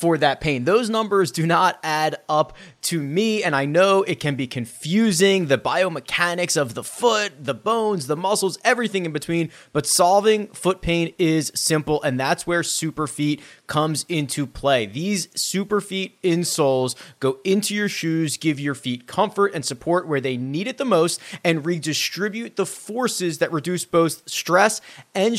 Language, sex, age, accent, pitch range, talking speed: English, male, 30-49, American, 150-195 Hz, 175 wpm